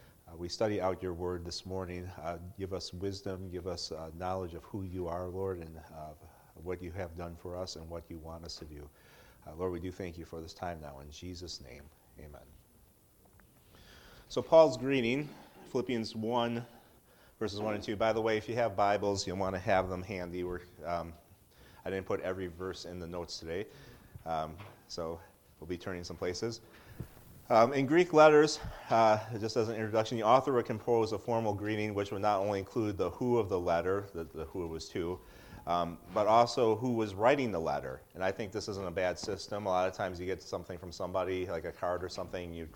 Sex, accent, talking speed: male, American, 215 wpm